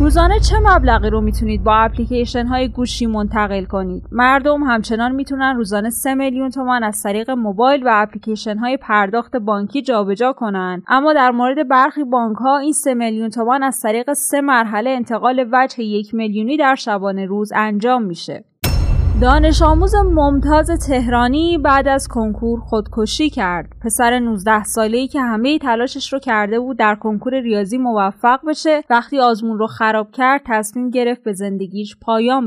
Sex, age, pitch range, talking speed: female, 20-39, 215-265 Hz, 155 wpm